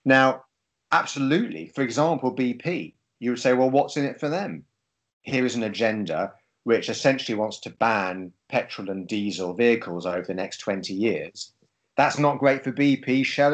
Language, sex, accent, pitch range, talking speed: German, male, British, 90-130 Hz, 170 wpm